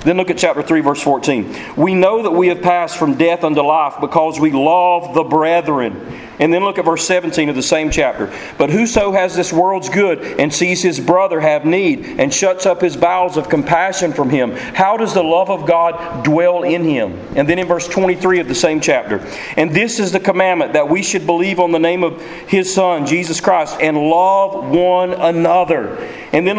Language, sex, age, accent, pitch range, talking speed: English, male, 40-59, American, 160-185 Hz, 210 wpm